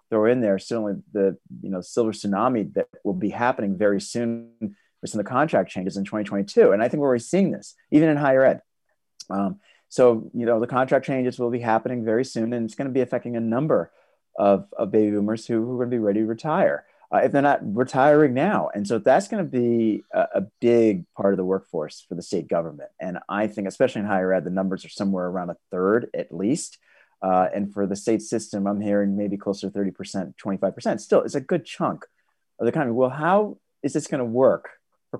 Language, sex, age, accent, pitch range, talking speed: English, male, 30-49, American, 95-125 Hz, 230 wpm